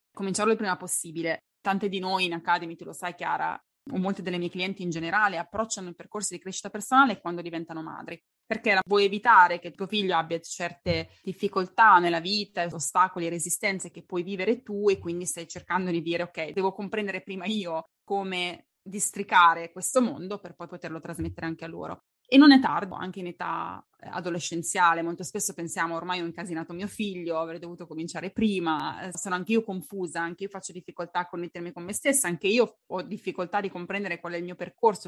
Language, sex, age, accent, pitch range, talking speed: Italian, female, 20-39, native, 170-200 Hz, 190 wpm